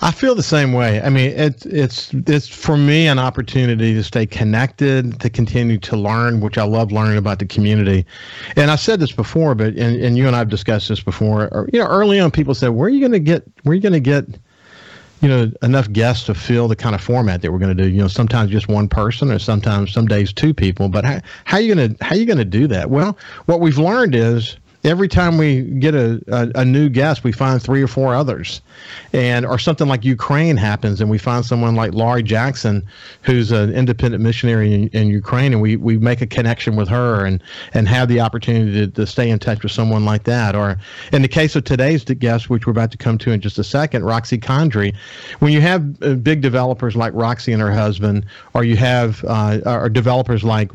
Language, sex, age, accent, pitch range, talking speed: English, male, 50-69, American, 110-135 Hz, 235 wpm